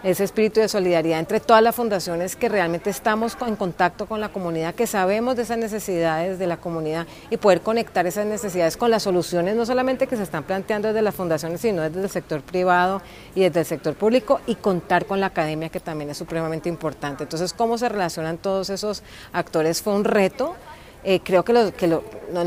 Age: 30-49